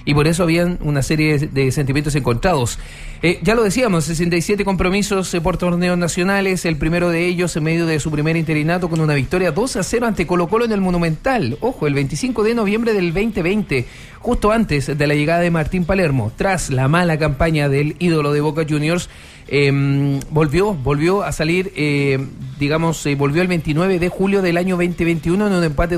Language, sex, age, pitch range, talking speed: Spanish, male, 40-59, 150-180 Hz, 190 wpm